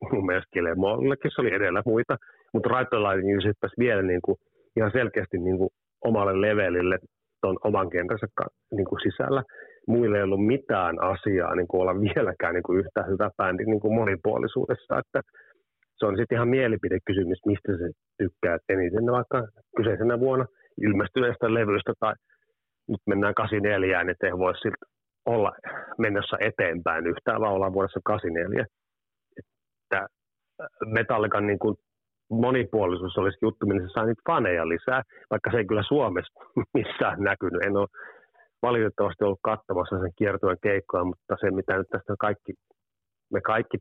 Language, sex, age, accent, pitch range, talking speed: Finnish, male, 30-49, native, 95-110 Hz, 145 wpm